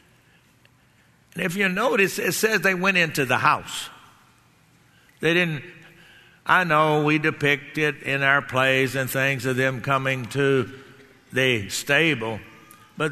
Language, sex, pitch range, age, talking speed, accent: English, male, 130-165 Hz, 60-79, 135 wpm, American